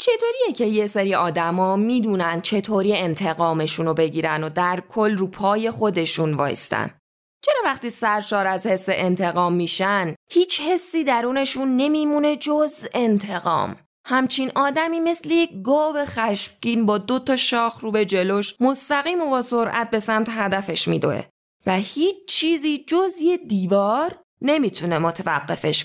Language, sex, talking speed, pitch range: Persian, female, 135 wpm, 180-265 Hz